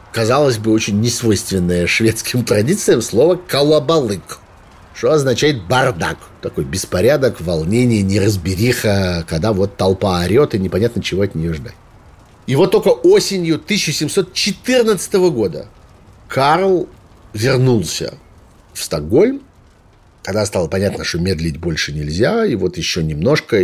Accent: native